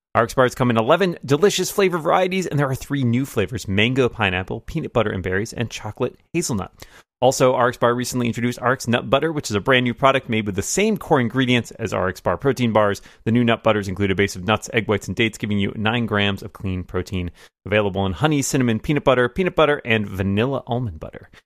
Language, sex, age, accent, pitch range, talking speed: English, male, 30-49, American, 105-130 Hz, 215 wpm